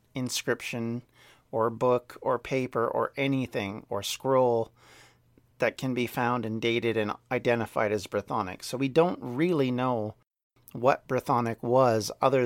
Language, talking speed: English, 135 wpm